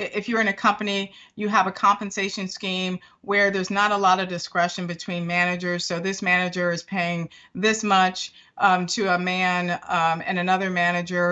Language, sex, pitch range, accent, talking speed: English, female, 175-200 Hz, American, 180 wpm